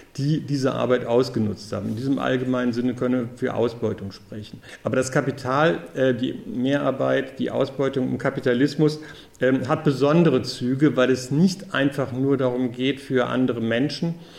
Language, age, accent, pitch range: German, 50-69, German, 120-145 Hz